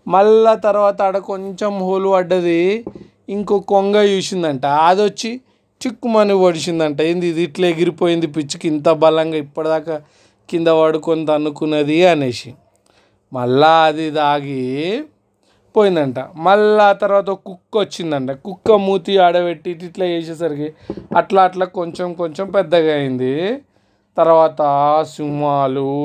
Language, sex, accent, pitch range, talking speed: Telugu, male, native, 155-190 Hz, 105 wpm